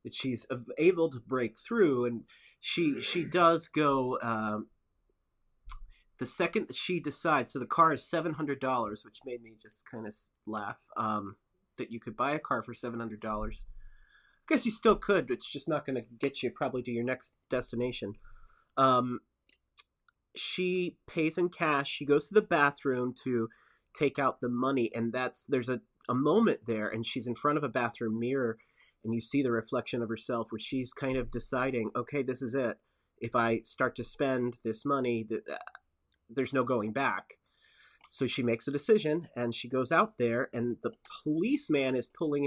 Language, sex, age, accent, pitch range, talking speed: English, male, 30-49, American, 115-145 Hz, 180 wpm